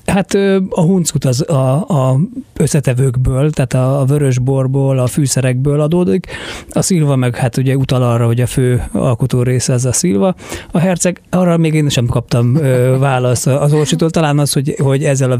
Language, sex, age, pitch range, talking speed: Hungarian, male, 30-49, 125-145 Hz, 175 wpm